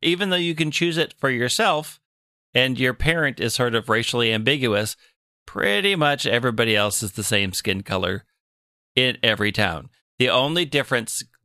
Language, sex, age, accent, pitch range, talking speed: English, male, 40-59, American, 105-130 Hz, 160 wpm